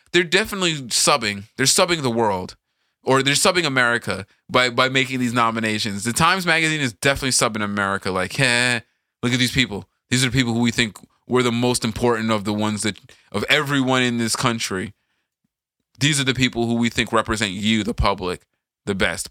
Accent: American